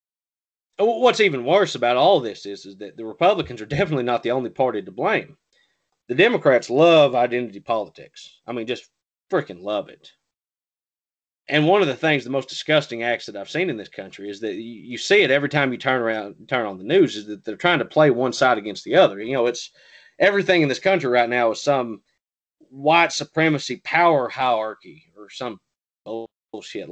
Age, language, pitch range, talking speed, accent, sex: 30-49, English, 115-165 Hz, 195 wpm, American, male